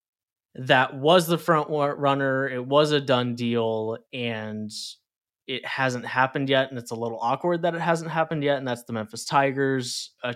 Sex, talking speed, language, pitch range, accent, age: male, 180 wpm, English, 115-135 Hz, American, 20-39